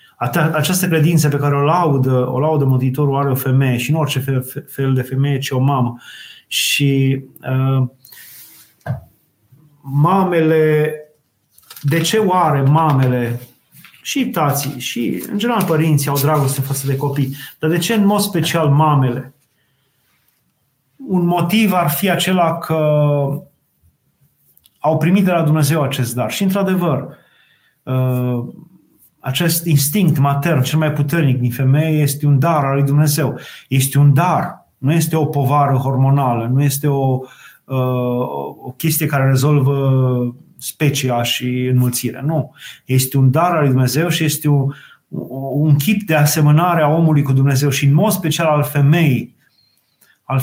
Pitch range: 130-155 Hz